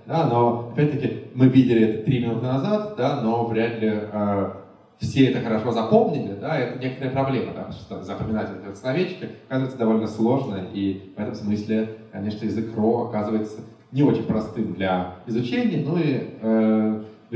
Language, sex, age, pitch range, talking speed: Russian, male, 20-39, 110-155 Hz, 165 wpm